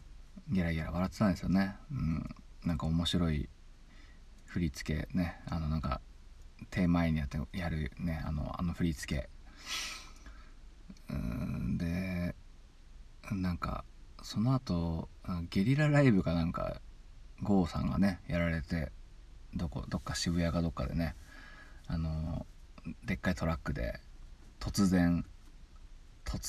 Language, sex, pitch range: Japanese, male, 75-95 Hz